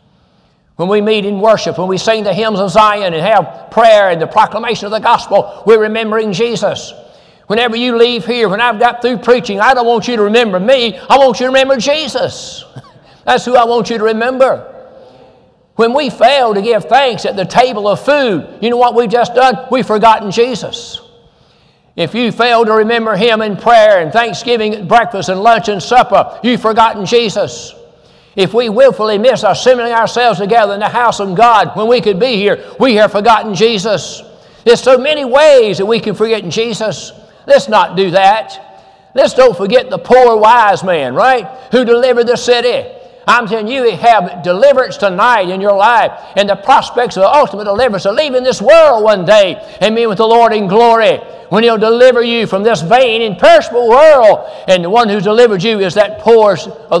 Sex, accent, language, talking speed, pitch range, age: male, American, English, 200 wpm, 205-245 Hz, 60-79